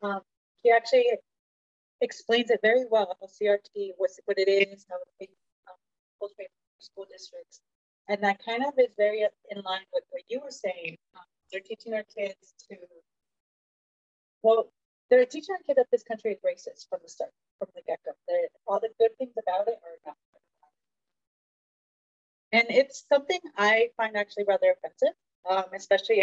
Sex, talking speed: female, 170 wpm